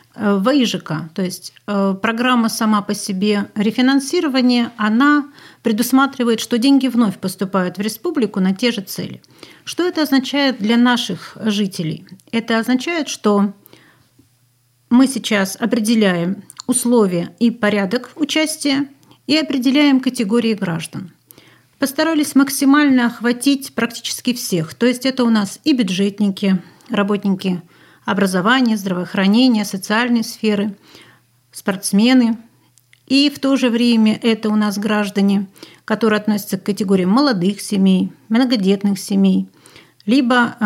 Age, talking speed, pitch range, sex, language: 40-59, 110 wpm, 195-250 Hz, female, Russian